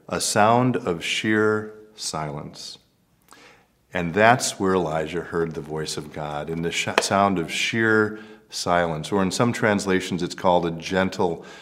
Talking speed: 145 wpm